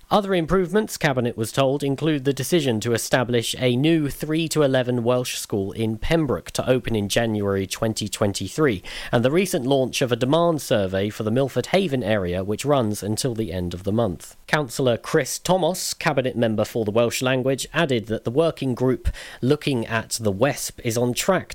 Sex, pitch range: male, 110-140 Hz